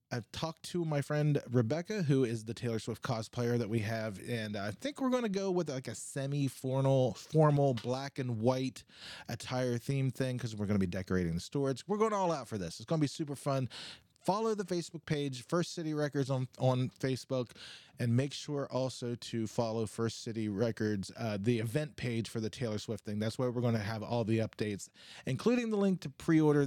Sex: male